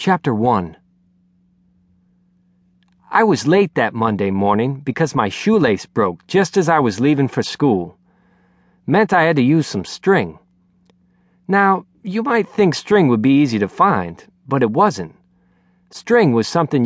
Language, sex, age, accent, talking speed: English, male, 40-59, American, 150 wpm